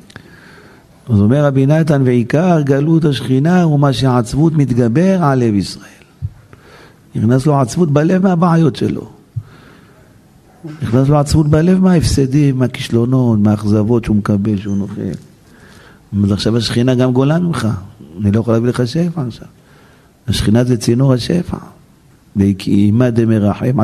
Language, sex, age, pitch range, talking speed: Hebrew, male, 50-69, 110-155 Hz, 130 wpm